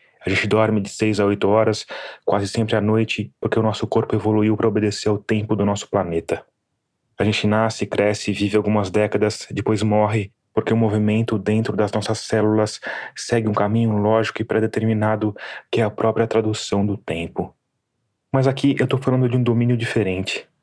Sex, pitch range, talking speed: male, 105-115 Hz, 180 wpm